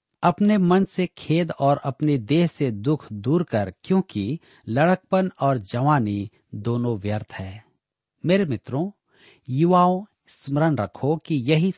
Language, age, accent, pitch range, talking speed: Hindi, 50-69, native, 120-165 Hz, 125 wpm